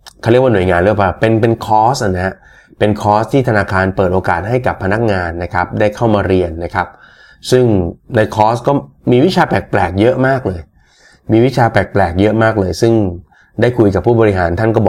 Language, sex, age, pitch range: Thai, male, 20-39, 95-115 Hz